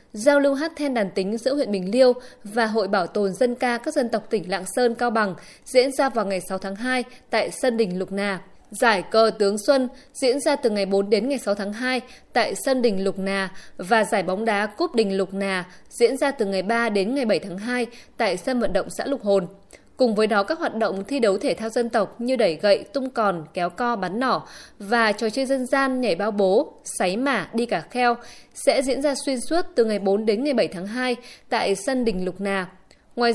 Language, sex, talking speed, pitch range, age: Vietnamese, female, 240 wpm, 200-260 Hz, 20-39